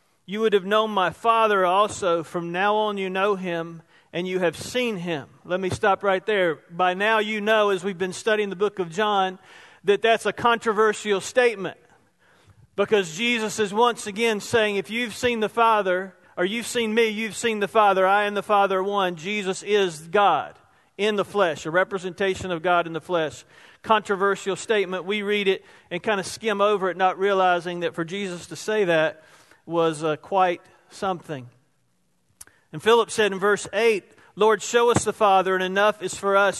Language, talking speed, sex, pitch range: English, 190 wpm, male, 185-220 Hz